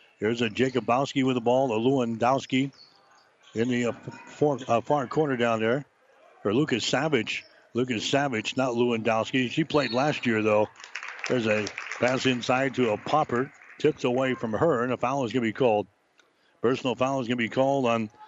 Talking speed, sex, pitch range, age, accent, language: 185 wpm, male, 120-145 Hz, 60-79, American, English